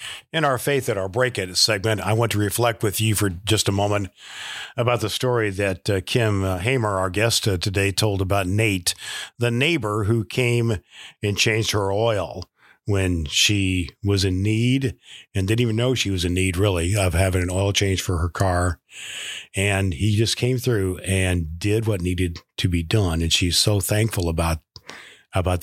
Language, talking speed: English, 185 wpm